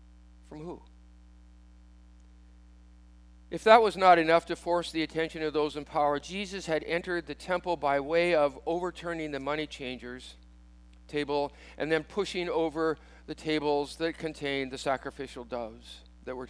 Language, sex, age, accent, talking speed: English, male, 50-69, American, 150 wpm